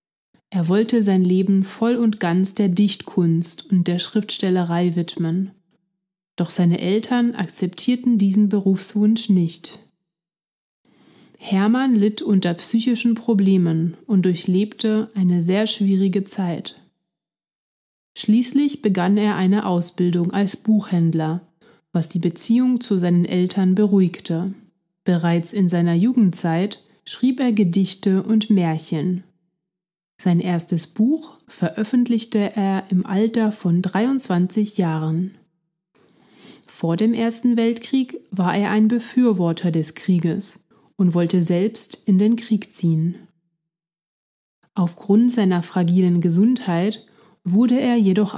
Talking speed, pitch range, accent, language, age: 110 wpm, 175-215 Hz, German, German, 30-49